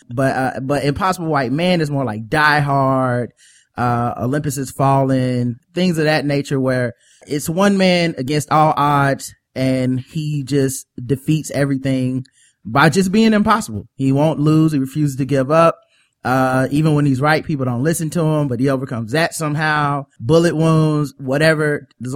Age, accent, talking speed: 20-39, American, 170 wpm